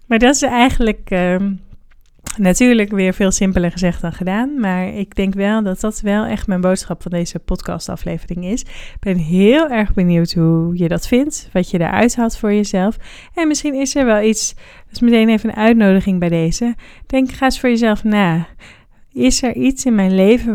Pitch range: 175-220 Hz